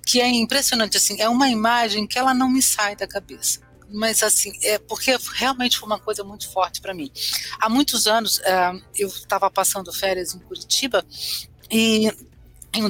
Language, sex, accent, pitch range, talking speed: Portuguese, female, Brazilian, 195-265 Hz, 175 wpm